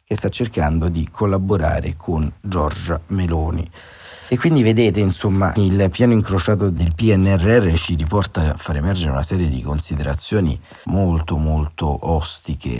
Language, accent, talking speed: Italian, native, 135 wpm